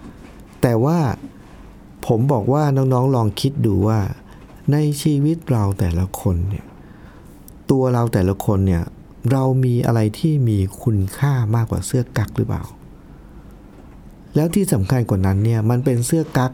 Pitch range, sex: 100-140 Hz, male